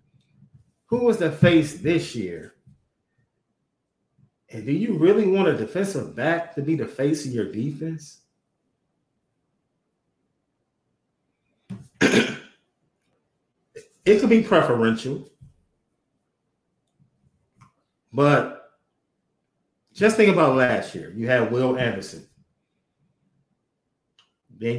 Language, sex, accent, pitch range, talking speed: English, male, American, 120-165 Hz, 85 wpm